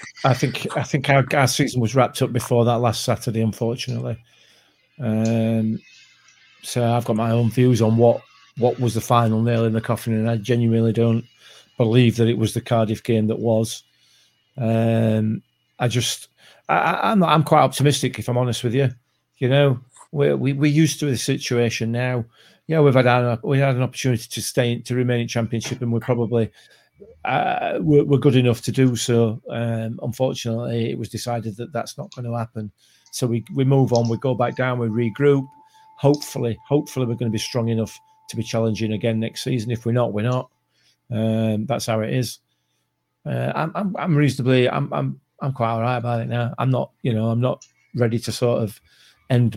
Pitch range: 115-130 Hz